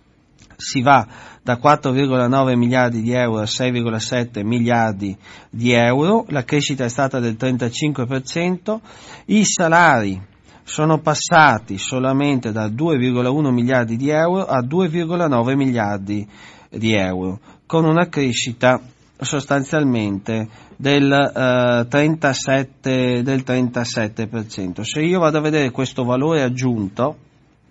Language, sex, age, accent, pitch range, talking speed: Italian, male, 40-59, native, 115-150 Hz, 105 wpm